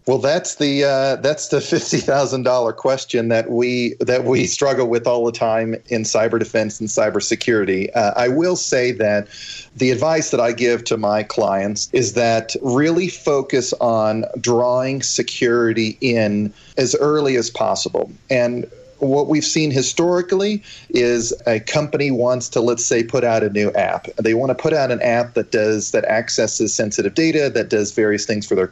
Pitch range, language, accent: 115-135 Hz, English, American